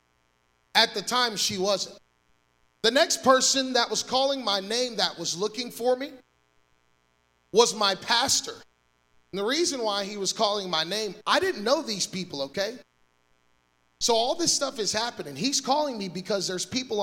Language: English